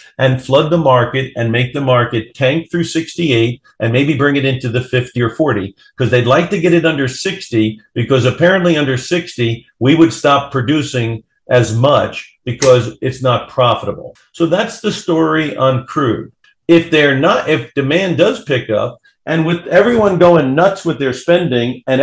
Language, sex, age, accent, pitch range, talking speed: English, male, 50-69, American, 125-170 Hz, 175 wpm